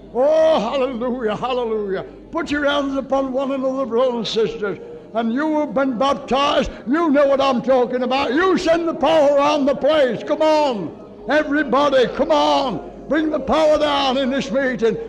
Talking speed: 165 wpm